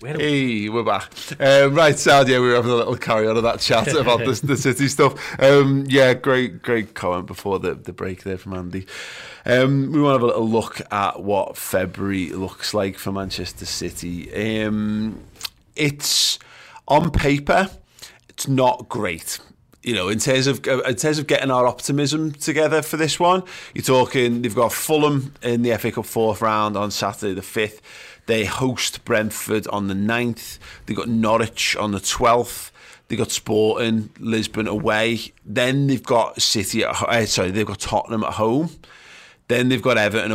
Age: 30-49